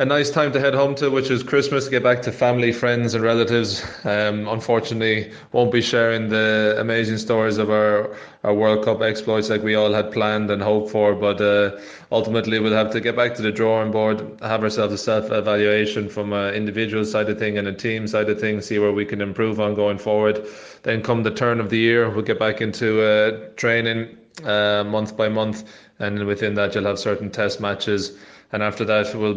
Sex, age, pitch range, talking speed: male, 20-39, 105-115 Hz, 215 wpm